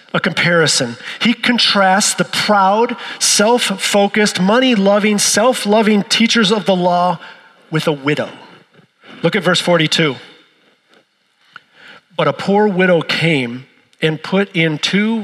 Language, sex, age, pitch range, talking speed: English, male, 40-59, 180-230 Hz, 115 wpm